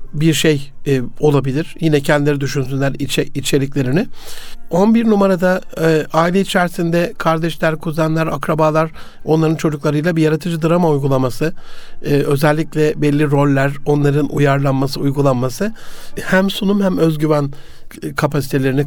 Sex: male